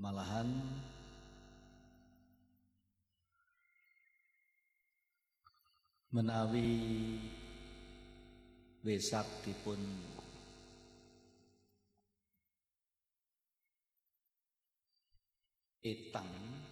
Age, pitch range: 50-69, 85-110 Hz